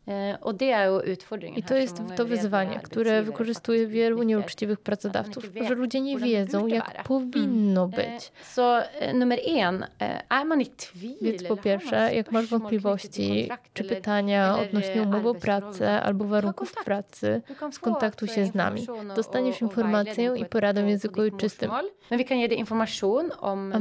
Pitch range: 200-230 Hz